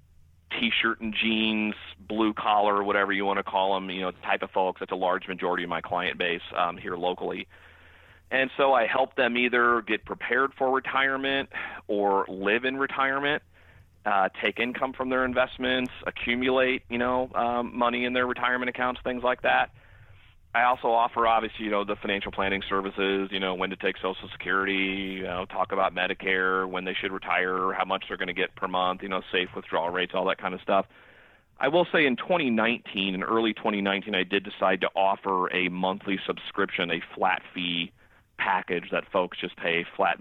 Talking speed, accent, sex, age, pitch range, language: 195 wpm, American, male, 30-49, 95-120 Hz, English